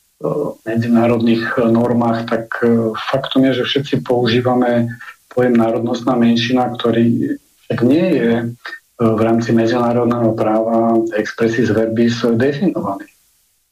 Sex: male